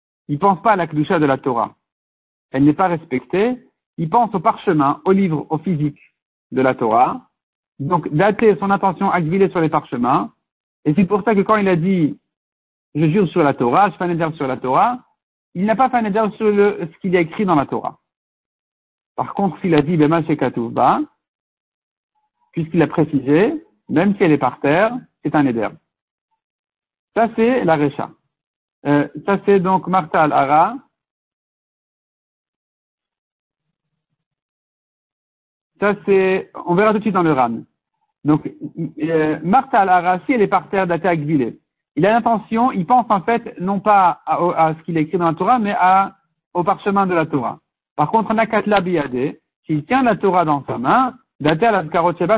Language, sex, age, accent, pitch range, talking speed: French, male, 60-79, French, 155-205 Hz, 180 wpm